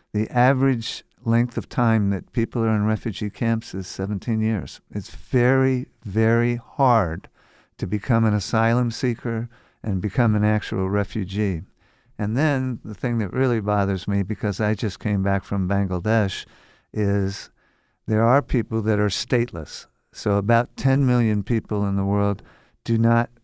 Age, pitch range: 50-69, 100-120 Hz